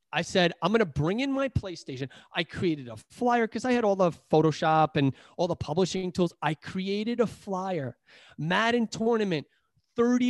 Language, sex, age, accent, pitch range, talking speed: English, male, 30-49, American, 165-220 Hz, 175 wpm